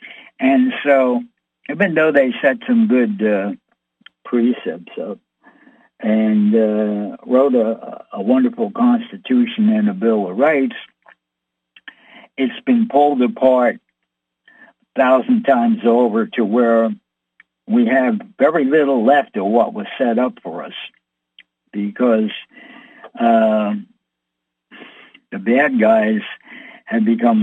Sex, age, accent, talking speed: male, 60-79, American, 115 wpm